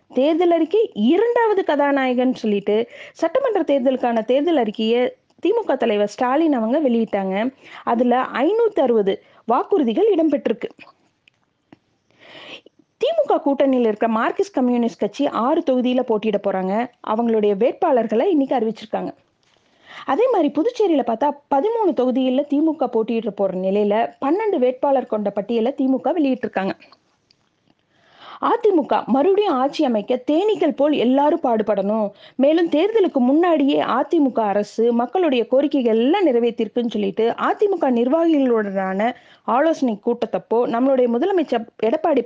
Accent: native